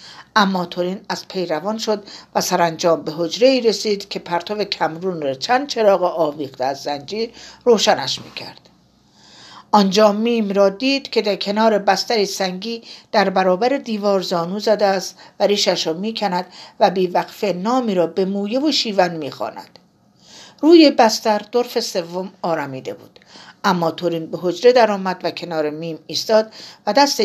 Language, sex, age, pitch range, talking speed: Persian, female, 50-69, 175-230 Hz, 150 wpm